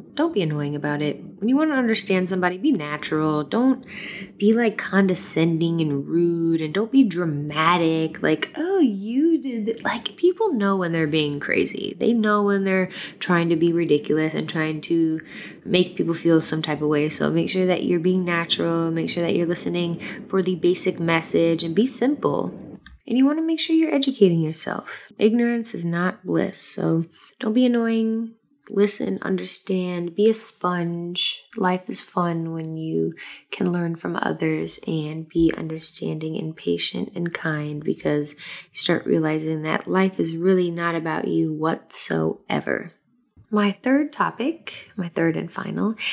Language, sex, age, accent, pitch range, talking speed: English, female, 20-39, American, 165-230 Hz, 165 wpm